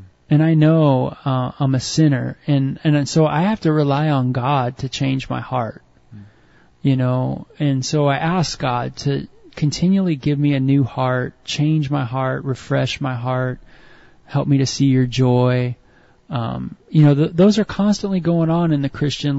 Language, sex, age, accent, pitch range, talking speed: English, male, 30-49, American, 130-170 Hz, 175 wpm